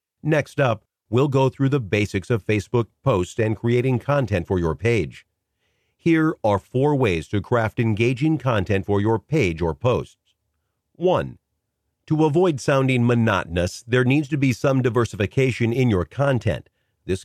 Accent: American